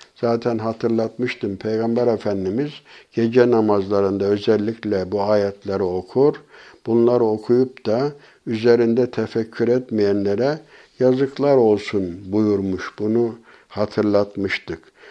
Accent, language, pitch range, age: native, Turkish, 105-130 Hz, 60-79